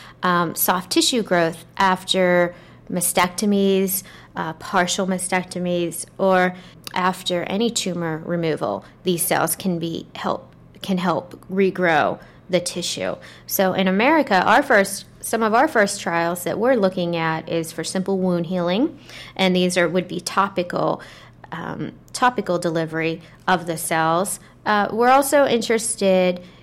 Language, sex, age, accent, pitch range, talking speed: English, female, 30-49, American, 170-195 Hz, 135 wpm